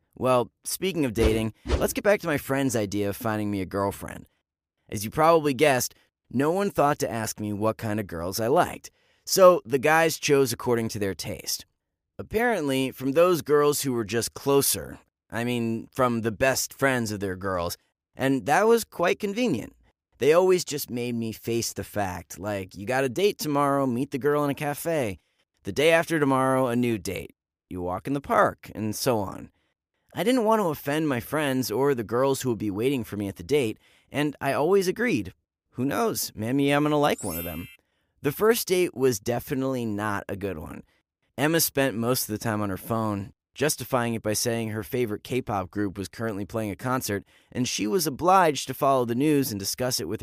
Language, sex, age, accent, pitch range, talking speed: English, male, 30-49, American, 105-145 Hz, 205 wpm